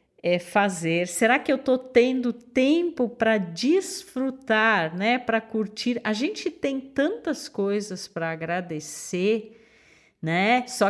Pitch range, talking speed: 170-240 Hz, 120 wpm